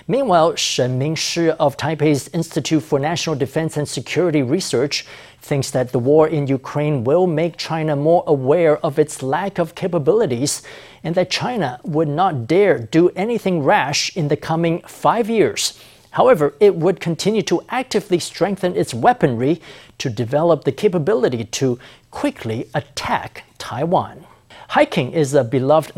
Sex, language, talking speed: male, English, 145 wpm